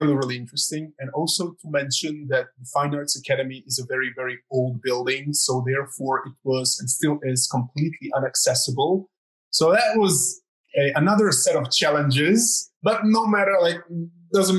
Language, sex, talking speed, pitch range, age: English, male, 160 wpm, 130-170 Hz, 20-39